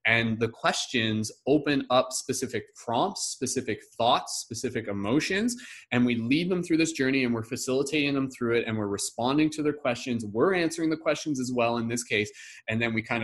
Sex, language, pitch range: male, English, 110-140 Hz